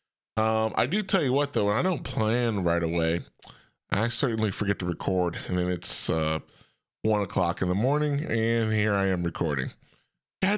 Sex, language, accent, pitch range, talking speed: male, English, American, 95-160 Hz, 185 wpm